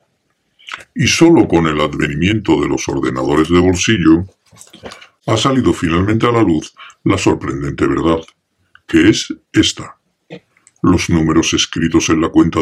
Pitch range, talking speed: 80-110 Hz, 135 wpm